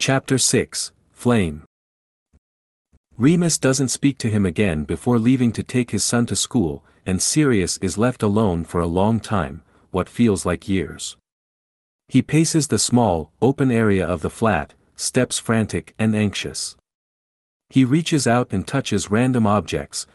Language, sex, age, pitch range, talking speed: English, male, 50-69, 85-125 Hz, 150 wpm